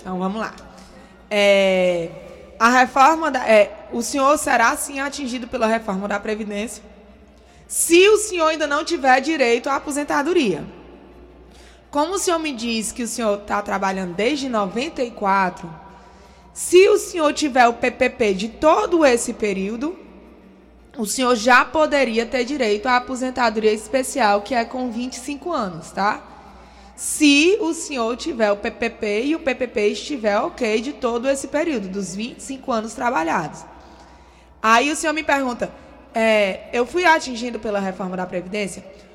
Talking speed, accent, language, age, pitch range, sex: 145 wpm, Brazilian, Portuguese, 20-39, 215-295 Hz, female